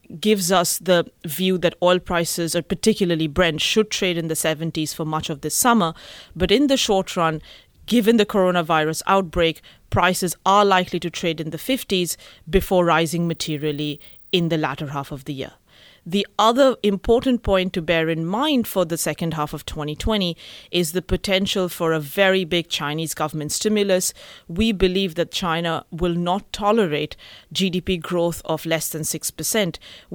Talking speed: 165 wpm